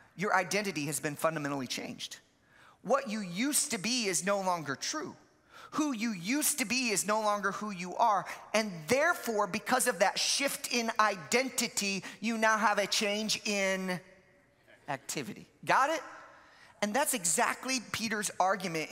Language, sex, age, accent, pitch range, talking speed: English, male, 30-49, American, 170-230 Hz, 150 wpm